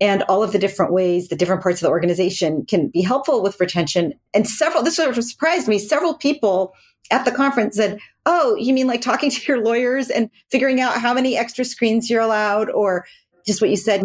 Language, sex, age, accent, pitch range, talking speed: English, female, 40-59, American, 180-220 Hz, 220 wpm